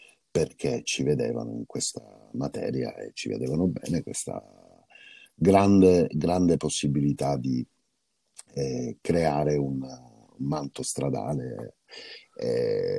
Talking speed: 100 wpm